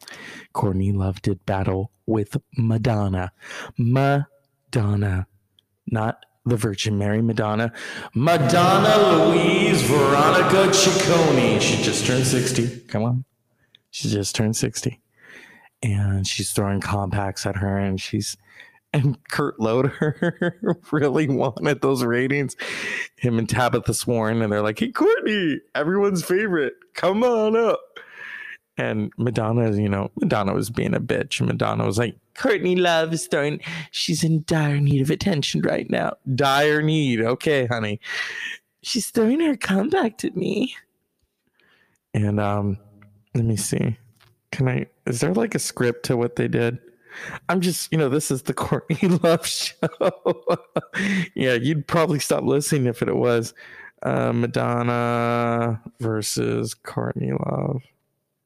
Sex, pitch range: male, 110-165 Hz